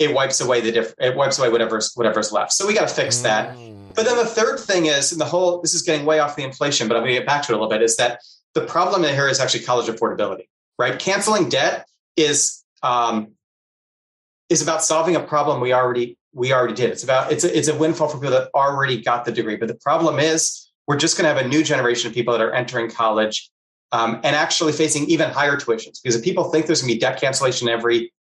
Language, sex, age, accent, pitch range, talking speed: English, male, 30-49, American, 115-155 Hz, 245 wpm